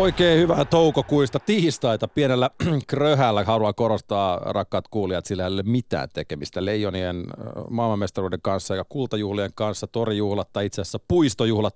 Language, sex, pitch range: Finnish, male, 100-130 Hz